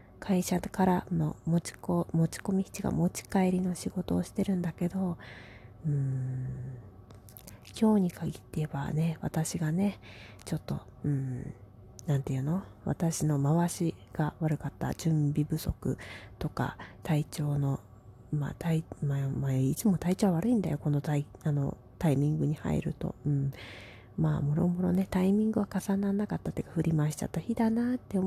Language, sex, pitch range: Japanese, female, 140-200 Hz